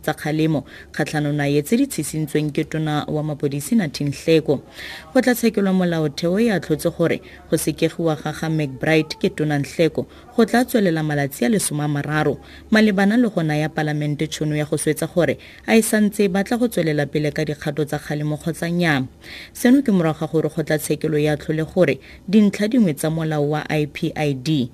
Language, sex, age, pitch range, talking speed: English, female, 30-49, 135-165 Hz, 160 wpm